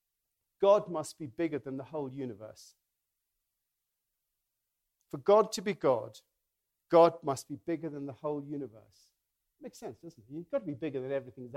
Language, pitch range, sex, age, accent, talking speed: English, 130-190 Hz, male, 50-69, British, 170 wpm